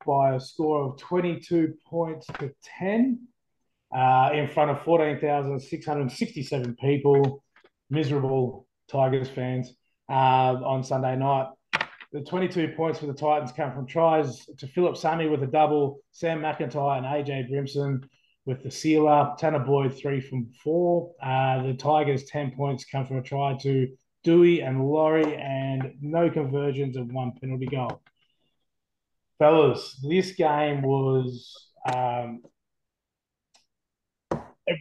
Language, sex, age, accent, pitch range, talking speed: English, male, 20-39, Australian, 130-150 Hz, 130 wpm